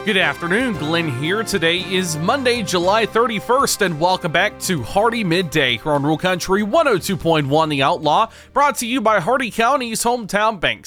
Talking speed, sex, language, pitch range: 165 wpm, male, English, 155-225 Hz